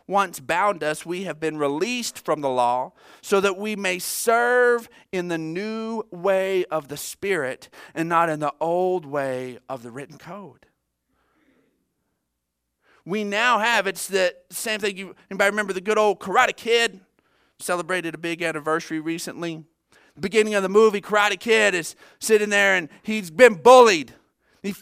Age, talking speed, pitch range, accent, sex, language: 40-59, 155 wpm, 145-205 Hz, American, male, English